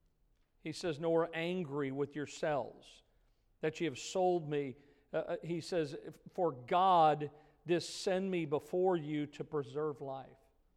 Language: English